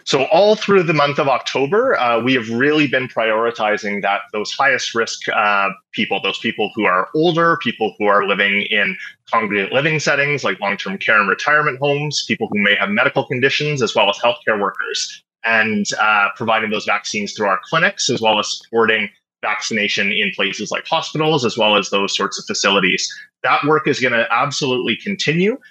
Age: 30-49